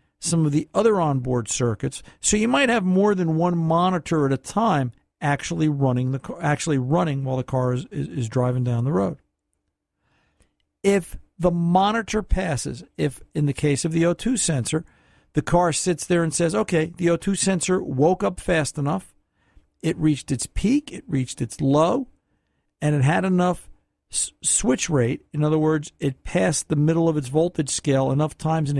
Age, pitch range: 50-69, 125-170 Hz